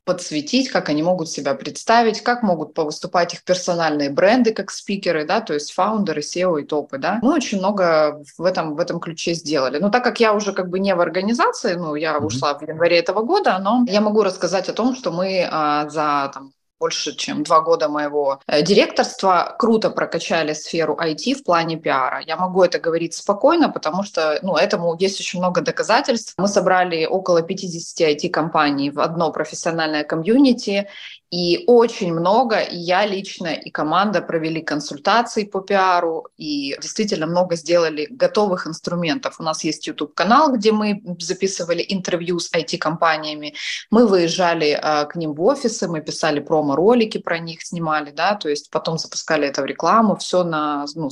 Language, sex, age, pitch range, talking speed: Ukrainian, female, 20-39, 155-200 Hz, 170 wpm